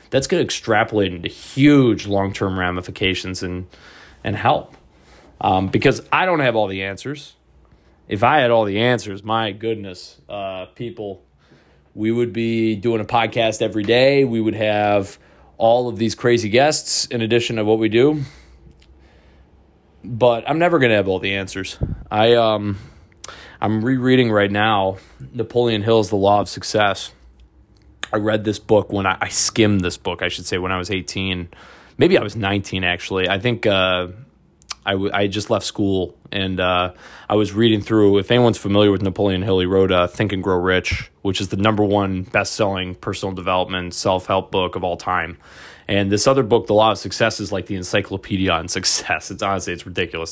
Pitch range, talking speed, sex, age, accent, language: 90-110 Hz, 185 wpm, male, 20-39, American, English